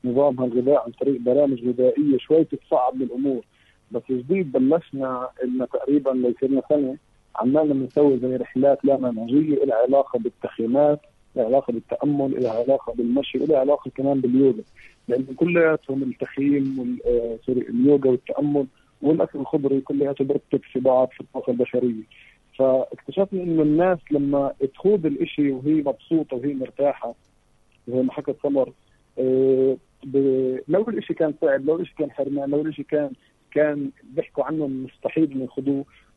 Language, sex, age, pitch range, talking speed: Arabic, male, 50-69, 130-160 Hz, 140 wpm